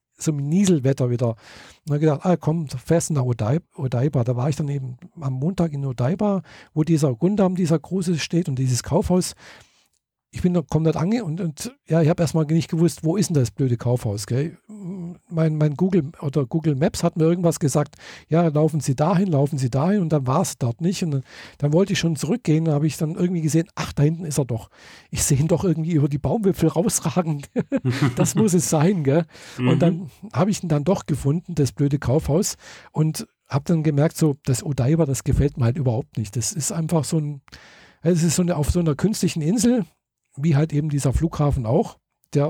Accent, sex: German, male